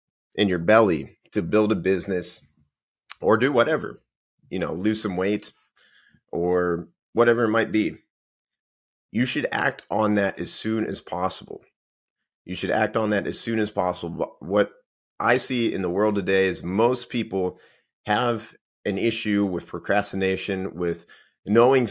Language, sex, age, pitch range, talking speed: English, male, 30-49, 90-120 Hz, 150 wpm